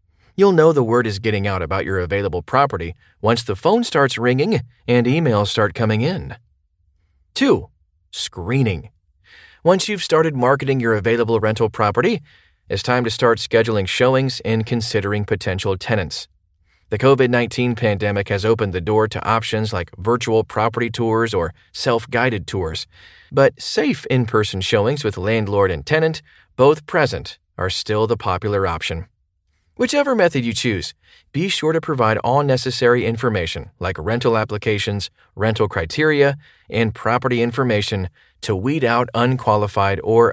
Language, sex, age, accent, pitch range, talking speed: English, male, 30-49, American, 100-125 Hz, 145 wpm